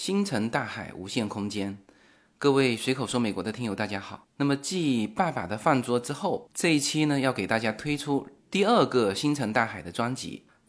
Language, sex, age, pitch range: Chinese, male, 20-39, 110-165 Hz